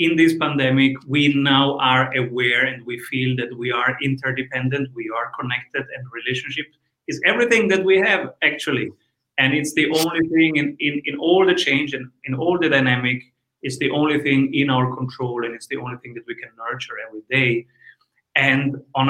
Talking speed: 190 wpm